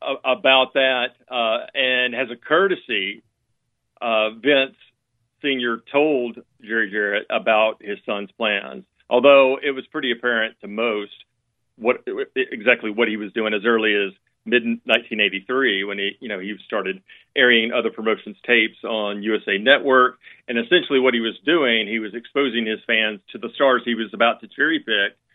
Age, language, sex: 40-59, English, male